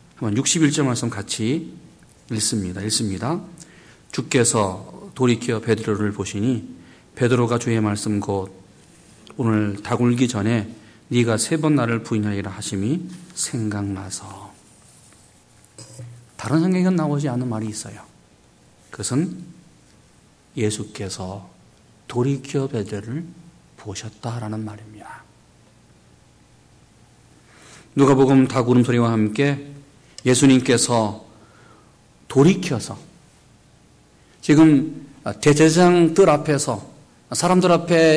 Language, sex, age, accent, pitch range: Korean, male, 40-59, native, 105-160 Hz